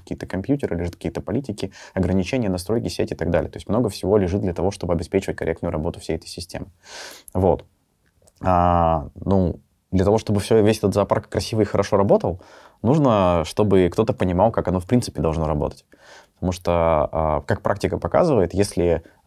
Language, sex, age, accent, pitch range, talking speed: Russian, male, 20-39, native, 85-105 Hz, 175 wpm